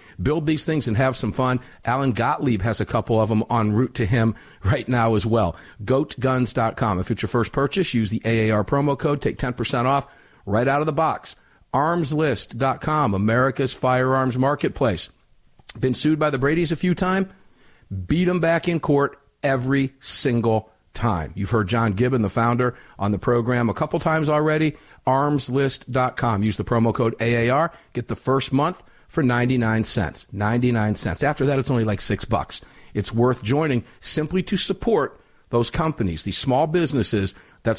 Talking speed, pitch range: 170 wpm, 110-145 Hz